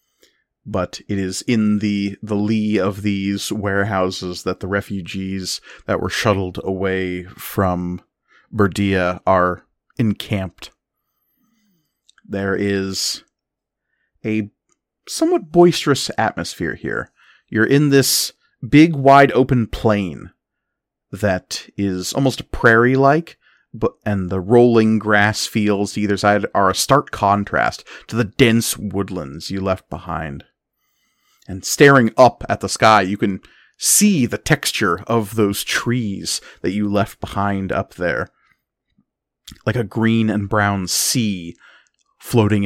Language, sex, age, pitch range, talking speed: English, male, 30-49, 95-115 Hz, 115 wpm